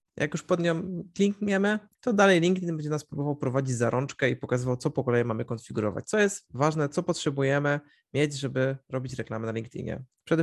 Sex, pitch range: male, 120-145 Hz